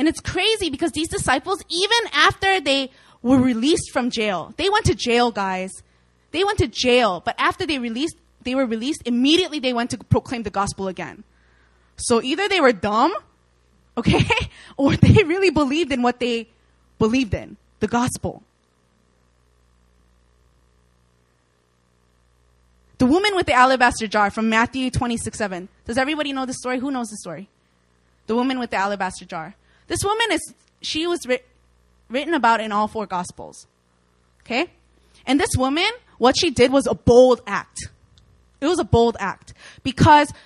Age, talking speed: 20-39, 160 wpm